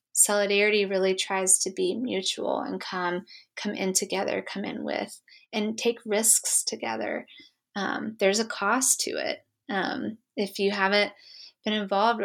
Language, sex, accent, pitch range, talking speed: English, female, American, 190-230 Hz, 145 wpm